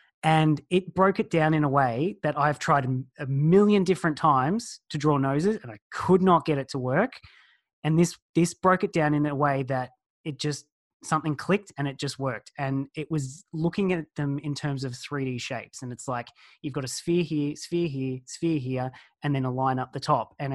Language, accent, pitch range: English, Australian, 135-165 Hz